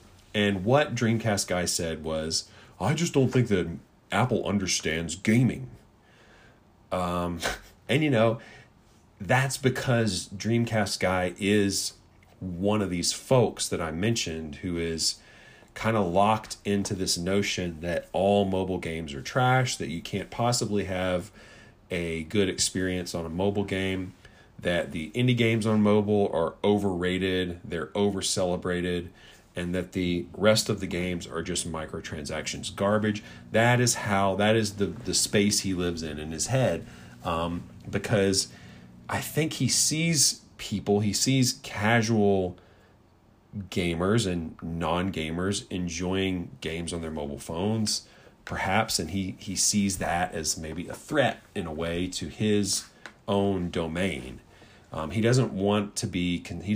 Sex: male